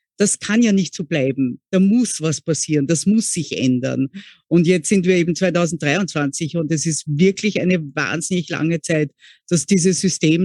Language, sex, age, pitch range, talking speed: German, female, 50-69, 160-195 Hz, 180 wpm